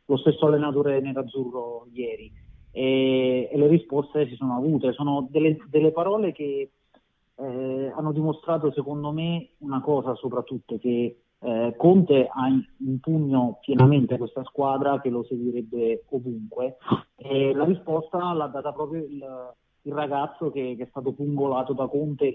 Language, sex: Italian, male